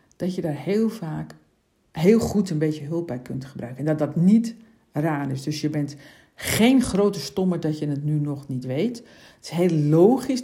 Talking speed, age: 205 wpm, 50-69